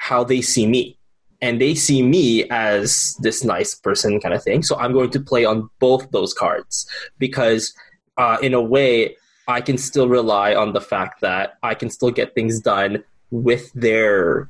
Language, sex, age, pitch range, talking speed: English, male, 10-29, 115-140 Hz, 185 wpm